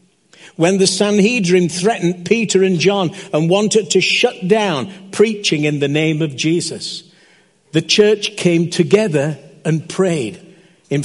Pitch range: 160-195 Hz